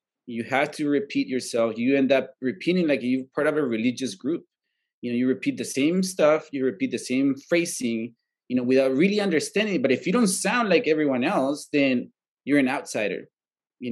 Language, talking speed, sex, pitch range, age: English, 205 wpm, male, 125-165 Hz, 30-49